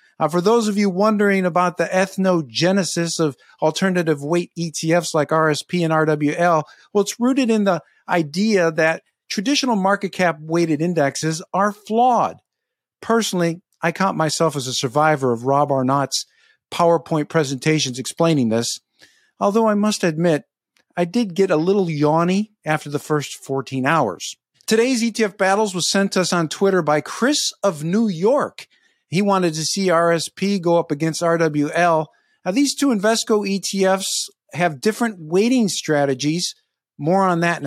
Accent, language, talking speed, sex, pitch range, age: American, English, 155 wpm, male, 160-215 Hz, 50-69